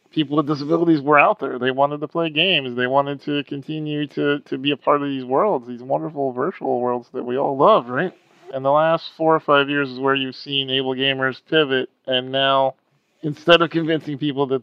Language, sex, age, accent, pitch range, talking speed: English, male, 40-59, American, 130-155 Hz, 220 wpm